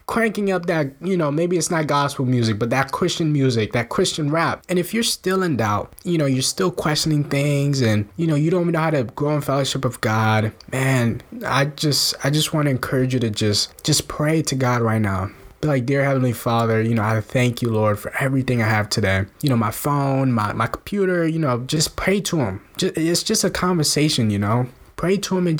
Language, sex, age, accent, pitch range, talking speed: English, male, 20-39, American, 120-165 Hz, 230 wpm